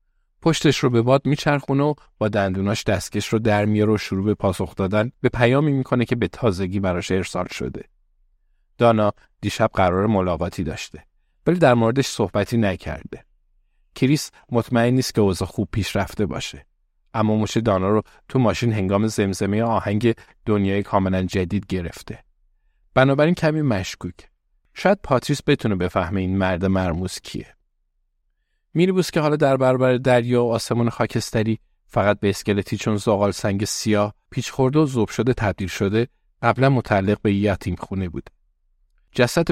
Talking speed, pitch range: 150 wpm, 95-115 Hz